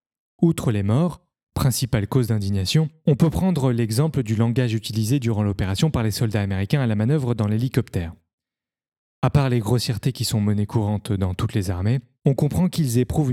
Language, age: French, 30-49